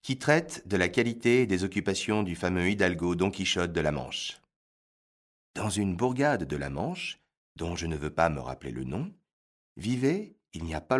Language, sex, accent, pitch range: French, male, French, 80-125 Hz